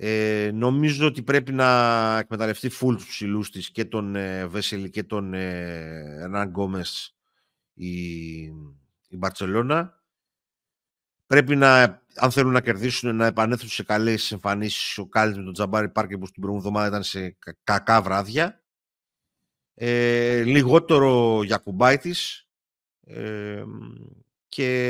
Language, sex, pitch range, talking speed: Greek, male, 105-130 Hz, 130 wpm